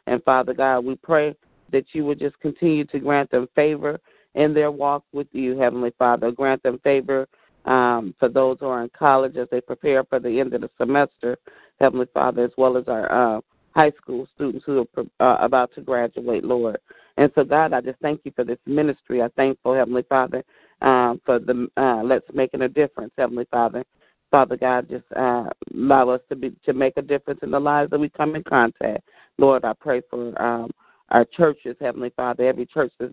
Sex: female